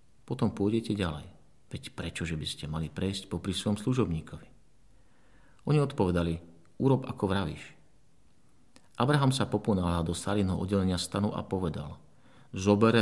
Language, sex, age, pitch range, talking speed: Slovak, male, 50-69, 90-115 Hz, 130 wpm